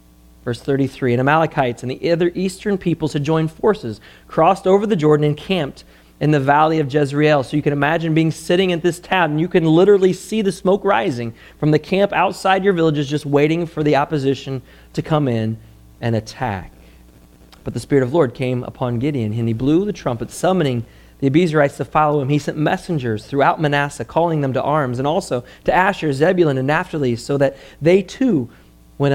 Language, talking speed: English, 200 wpm